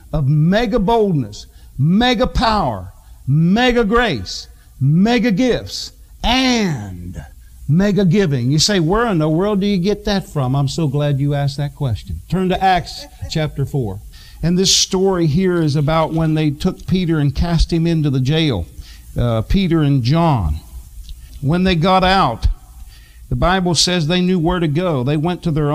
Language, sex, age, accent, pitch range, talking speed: English, male, 50-69, American, 150-215 Hz, 165 wpm